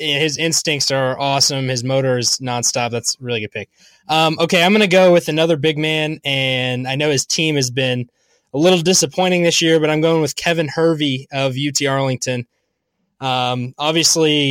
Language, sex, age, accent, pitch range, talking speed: English, male, 20-39, American, 125-155 Hz, 185 wpm